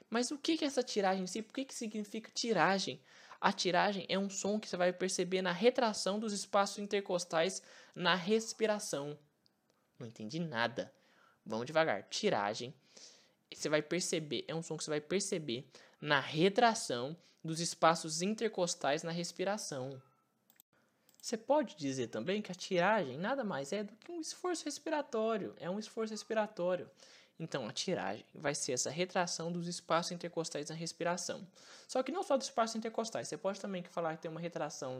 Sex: male